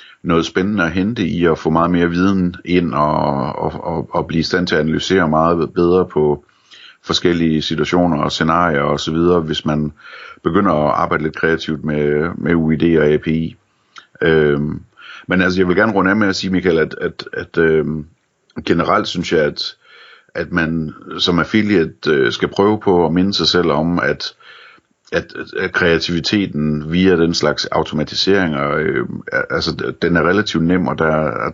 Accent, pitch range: native, 75-90 Hz